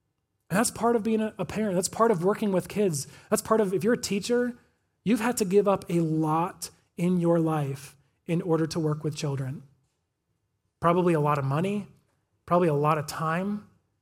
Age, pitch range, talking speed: 30-49, 140-180 Hz, 195 wpm